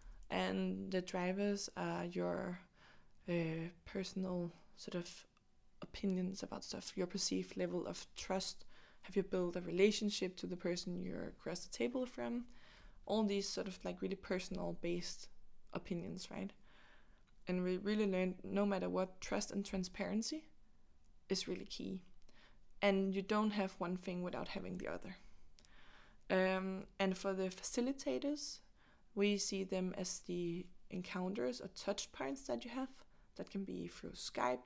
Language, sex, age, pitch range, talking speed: English, female, 20-39, 175-200 Hz, 145 wpm